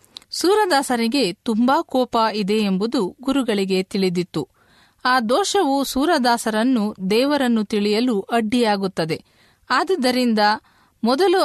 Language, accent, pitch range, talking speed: Kannada, native, 200-270 Hz, 80 wpm